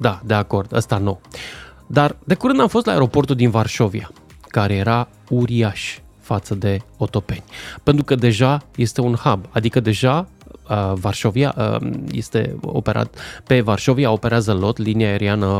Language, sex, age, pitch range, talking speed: Romanian, male, 20-39, 105-140 Hz, 150 wpm